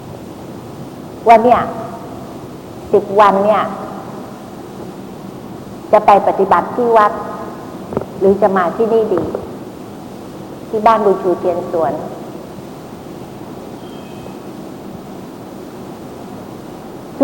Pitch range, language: 195-235 Hz, Thai